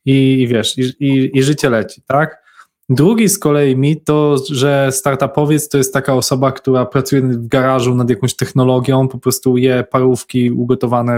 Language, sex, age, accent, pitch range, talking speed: Polish, male, 20-39, native, 125-150 Hz, 170 wpm